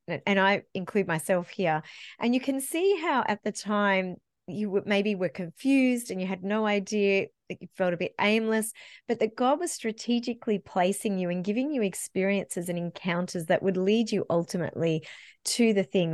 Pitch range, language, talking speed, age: 180-220 Hz, English, 180 wpm, 30-49